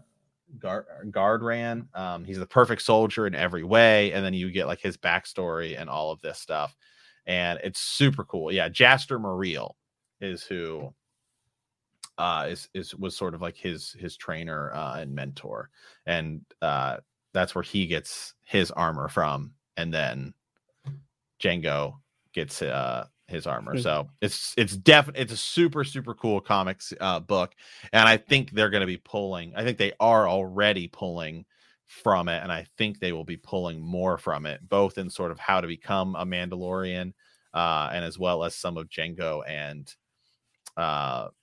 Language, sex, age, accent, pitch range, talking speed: English, male, 30-49, American, 85-115 Hz, 170 wpm